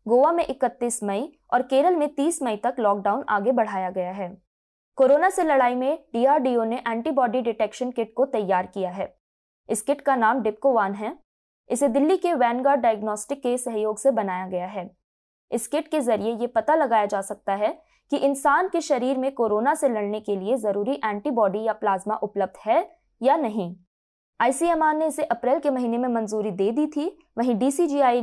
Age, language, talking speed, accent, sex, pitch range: 20-39, Hindi, 185 wpm, native, female, 210-280 Hz